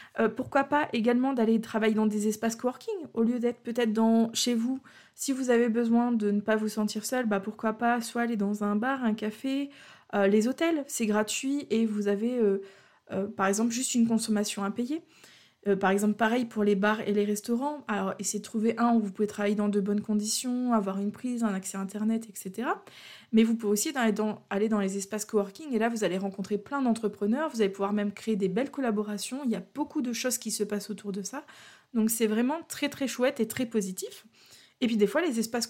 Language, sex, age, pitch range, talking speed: French, female, 20-39, 205-250 Hz, 230 wpm